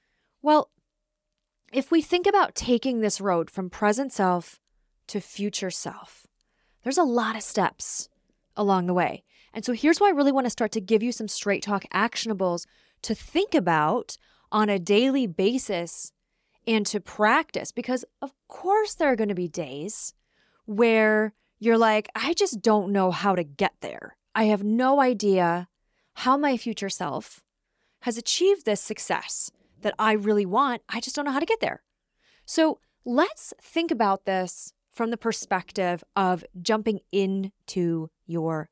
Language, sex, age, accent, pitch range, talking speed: English, female, 20-39, American, 195-270 Hz, 160 wpm